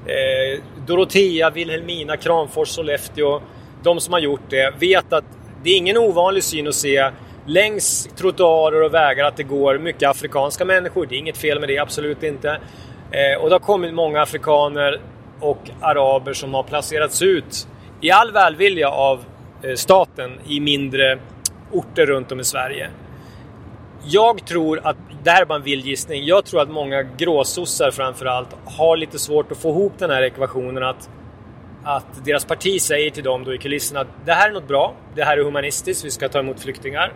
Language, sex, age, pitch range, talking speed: English, male, 30-49, 135-160 Hz, 175 wpm